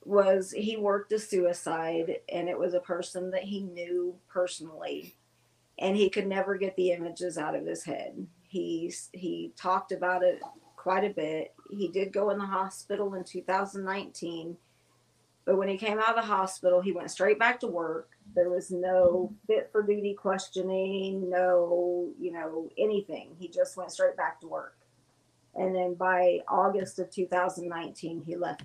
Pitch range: 175-200 Hz